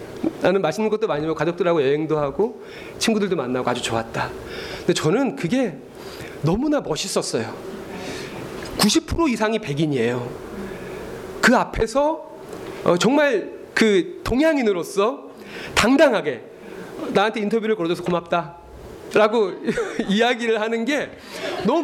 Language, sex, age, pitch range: Korean, male, 30-49, 160-245 Hz